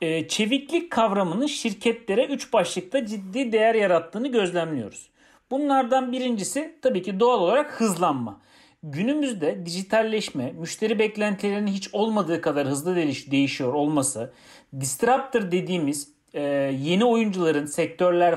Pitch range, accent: 175-245 Hz, native